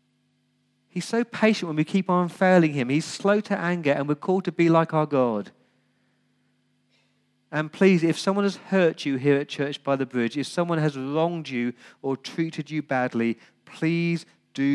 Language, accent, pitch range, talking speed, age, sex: English, British, 125-155 Hz, 185 wpm, 40-59, male